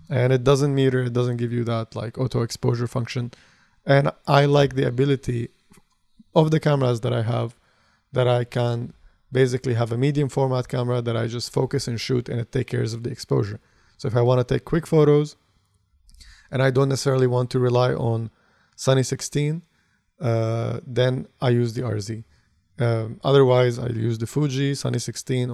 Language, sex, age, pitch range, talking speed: English, male, 20-39, 115-140 Hz, 185 wpm